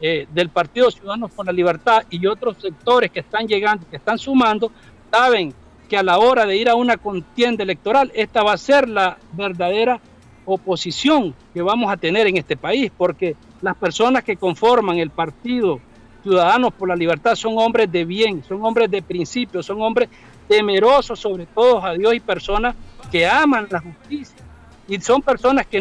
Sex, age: male, 60-79